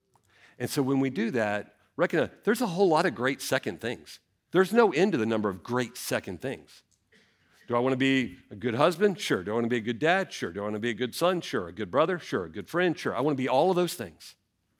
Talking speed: 275 wpm